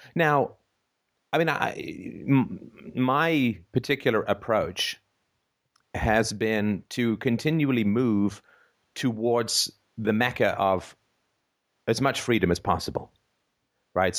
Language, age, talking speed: English, 40-59, 90 wpm